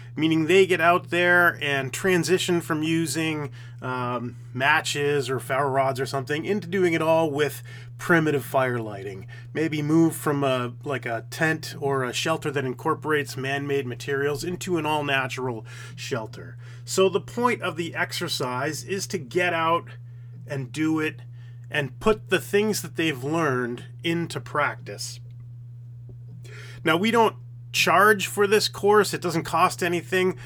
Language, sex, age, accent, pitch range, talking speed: English, male, 30-49, American, 125-170 Hz, 150 wpm